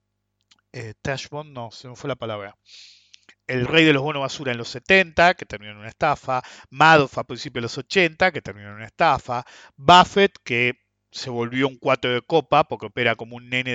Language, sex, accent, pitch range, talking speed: English, male, Argentinian, 120-185 Hz, 200 wpm